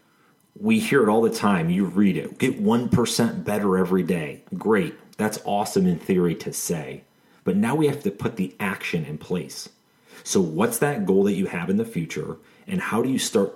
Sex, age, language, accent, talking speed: male, 30-49, English, American, 205 wpm